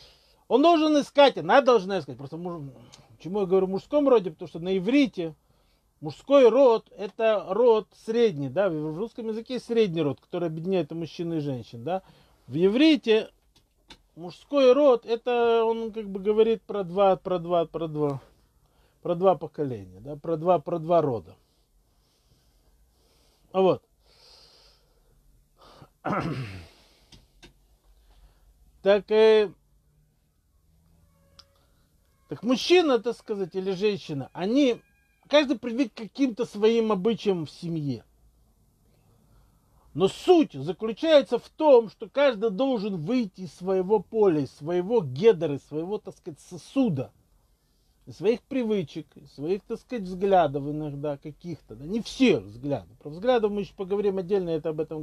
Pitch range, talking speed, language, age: 150-225 Hz, 125 wpm, Russian, 40-59